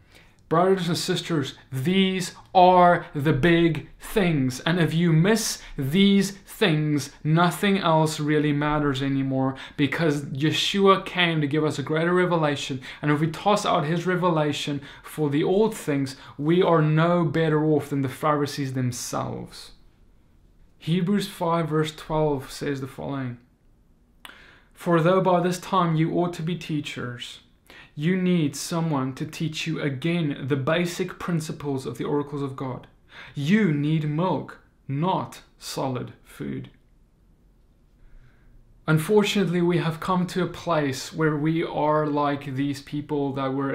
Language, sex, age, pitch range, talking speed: English, male, 20-39, 135-170 Hz, 140 wpm